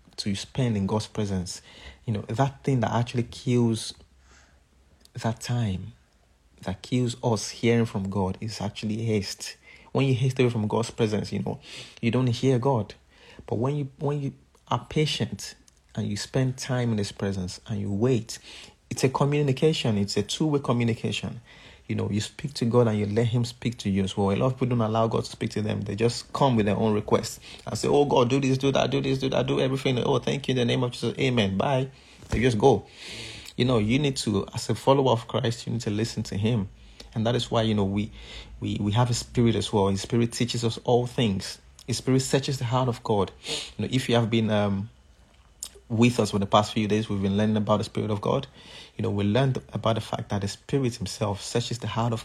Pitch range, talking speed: 105-125 Hz, 230 wpm